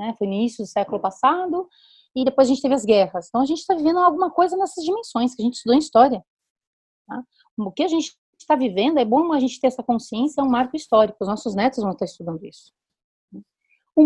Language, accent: Portuguese, Brazilian